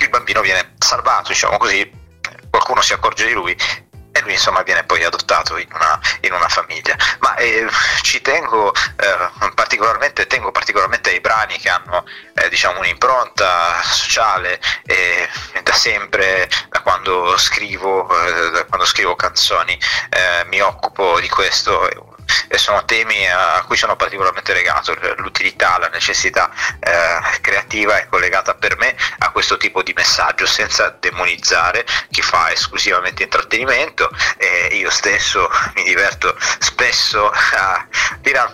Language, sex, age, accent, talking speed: Italian, male, 30-49, native, 140 wpm